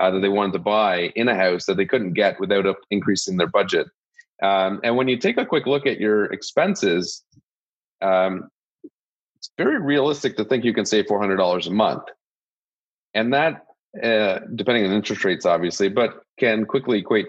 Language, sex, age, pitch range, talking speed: English, male, 30-49, 95-110 Hz, 180 wpm